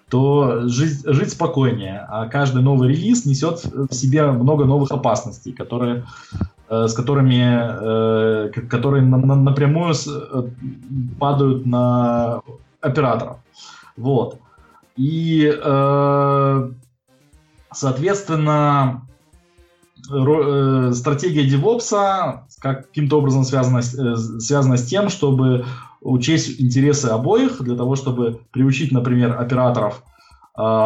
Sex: male